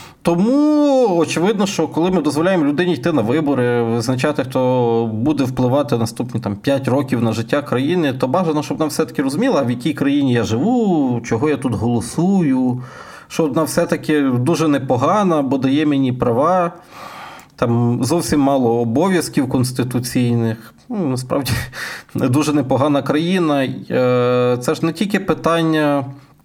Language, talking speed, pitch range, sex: Ukrainian, 140 wpm, 125-160 Hz, male